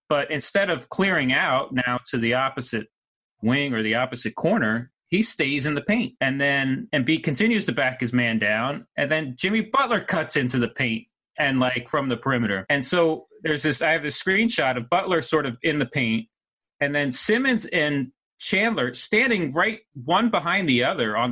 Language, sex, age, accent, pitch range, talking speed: English, male, 30-49, American, 115-150 Hz, 190 wpm